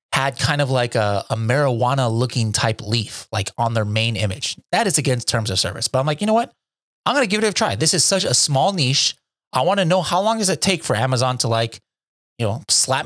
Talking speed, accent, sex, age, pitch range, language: 255 wpm, American, male, 30-49, 110-145 Hz, English